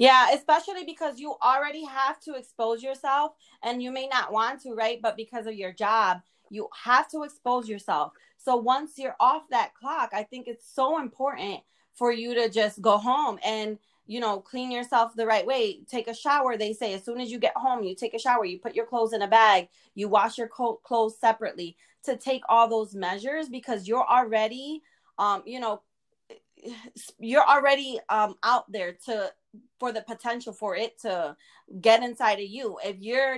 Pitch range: 215-255 Hz